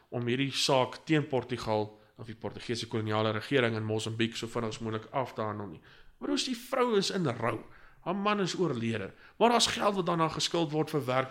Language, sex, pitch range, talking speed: English, male, 120-155 Hz, 225 wpm